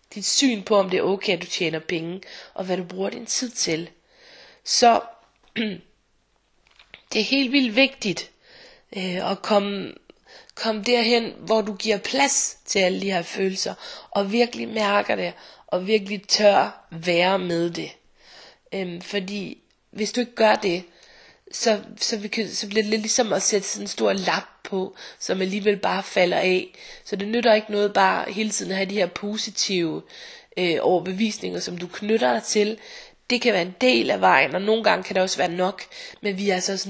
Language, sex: Danish, female